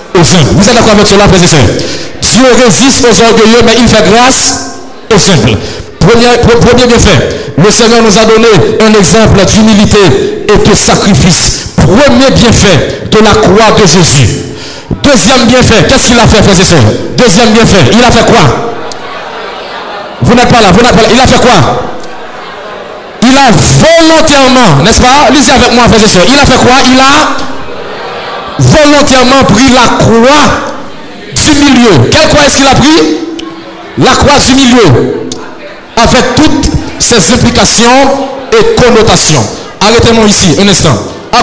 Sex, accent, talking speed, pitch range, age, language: male, French, 160 wpm, 210-265 Hz, 60-79, French